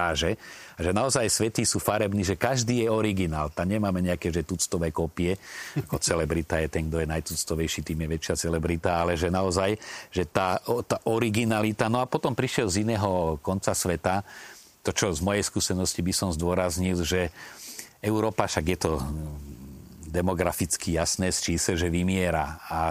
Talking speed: 160 wpm